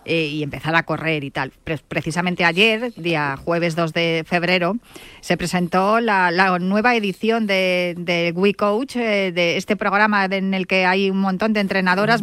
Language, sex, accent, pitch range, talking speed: Spanish, female, Spanish, 180-215 Hz, 160 wpm